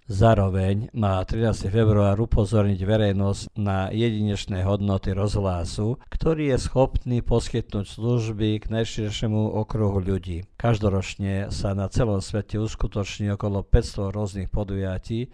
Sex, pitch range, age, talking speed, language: male, 95-110 Hz, 50-69, 115 wpm, Croatian